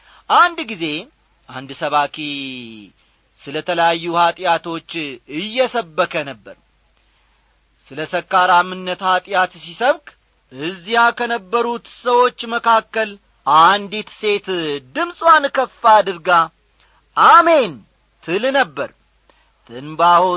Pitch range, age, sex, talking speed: 170-245 Hz, 40-59, male, 75 wpm